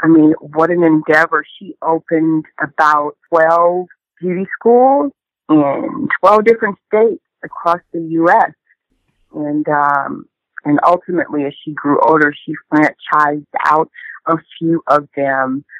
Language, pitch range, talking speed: English, 150-175 Hz, 125 wpm